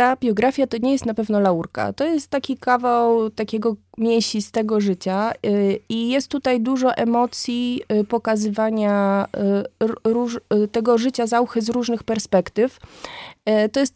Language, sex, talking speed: Polish, female, 135 wpm